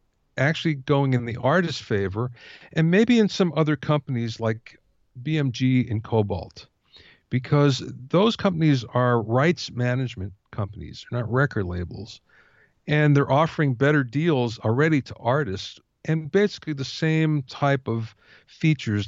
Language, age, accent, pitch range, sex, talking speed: English, 50-69, American, 110-150 Hz, male, 130 wpm